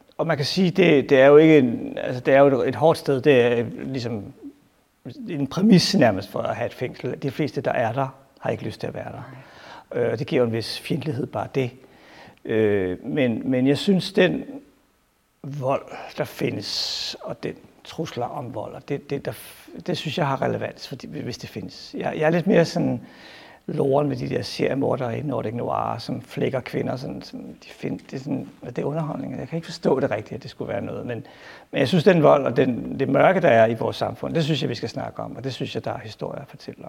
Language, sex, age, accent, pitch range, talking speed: Danish, male, 60-79, native, 130-165 Hz, 230 wpm